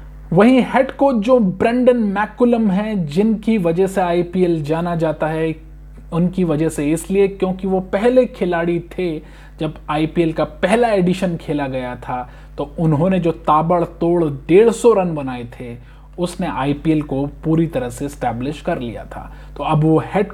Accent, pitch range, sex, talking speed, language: native, 150-190 Hz, male, 155 wpm, Hindi